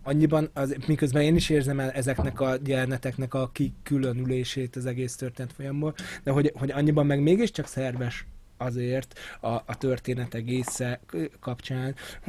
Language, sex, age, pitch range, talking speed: Hungarian, male, 20-39, 125-150 Hz, 140 wpm